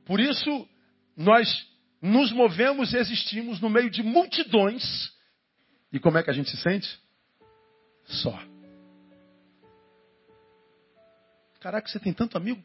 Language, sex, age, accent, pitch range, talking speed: Portuguese, male, 50-69, Brazilian, 165-245 Hz, 120 wpm